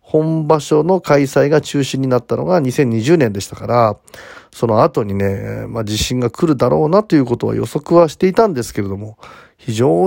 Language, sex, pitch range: Japanese, male, 110-160 Hz